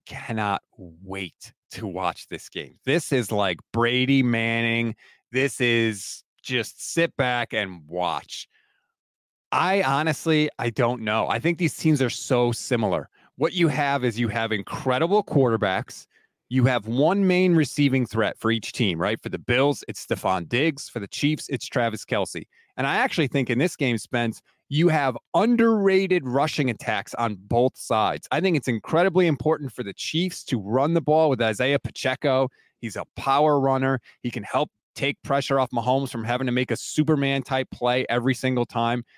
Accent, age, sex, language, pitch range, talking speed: American, 30-49, male, English, 120-155 Hz, 170 wpm